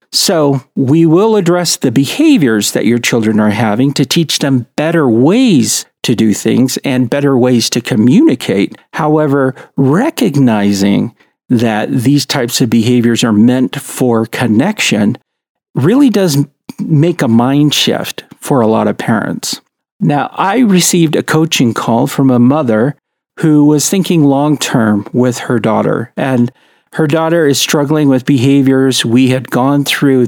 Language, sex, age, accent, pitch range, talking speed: English, male, 50-69, American, 120-155 Hz, 145 wpm